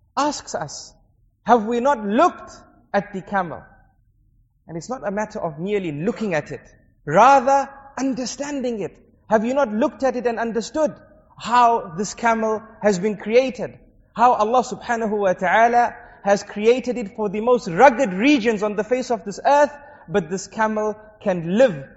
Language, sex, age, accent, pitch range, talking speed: English, male, 30-49, South African, 190-245 Hz, 165 wpm